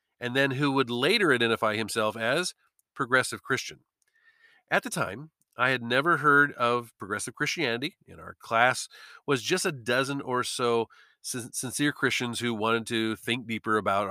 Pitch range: 115-150 Hz